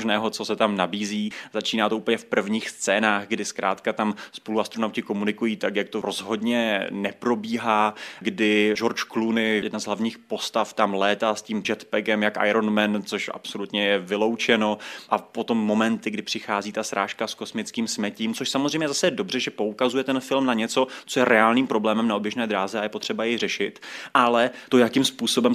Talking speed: 180 wpm